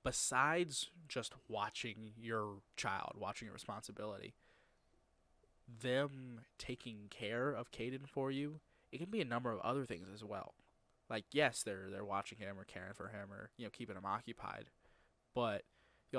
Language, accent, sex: English, American, male